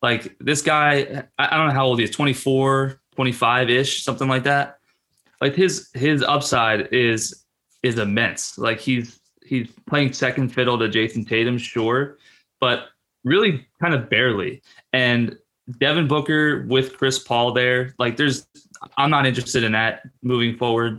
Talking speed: 150 wpm